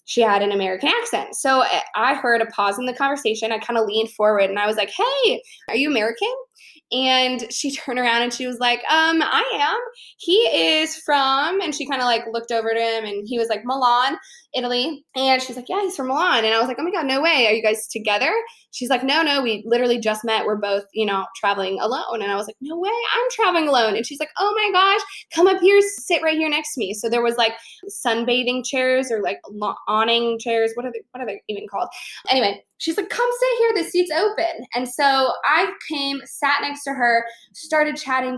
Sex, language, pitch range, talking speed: female, English, 225-310 Hz, 235 wpm